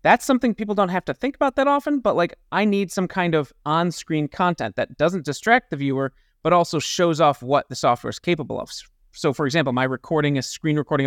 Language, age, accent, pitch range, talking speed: English, 30-49, American, 130-180 Hz, 235 wpm